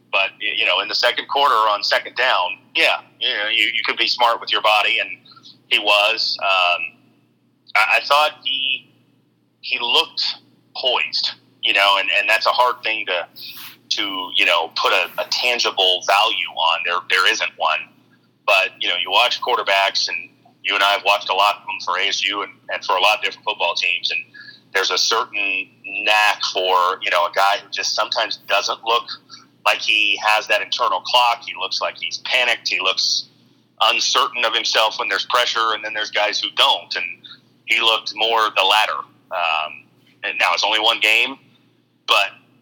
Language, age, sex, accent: English, 30-49, male, American